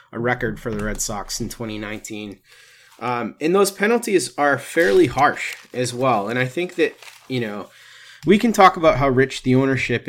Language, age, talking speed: English, 30-49, 185 wpm